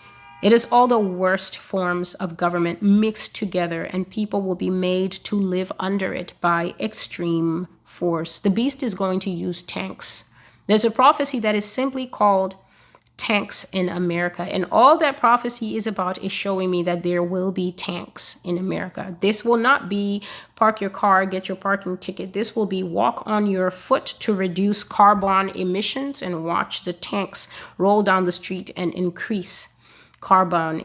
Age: 30-49